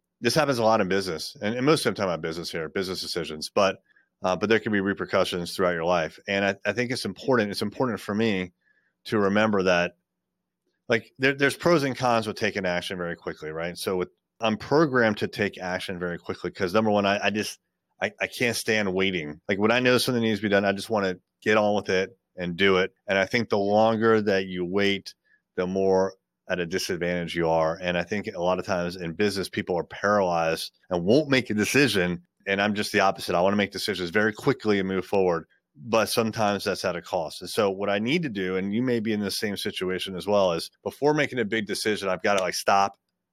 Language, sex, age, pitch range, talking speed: English, male, 30-49, 90-110 Hz, 235 wpm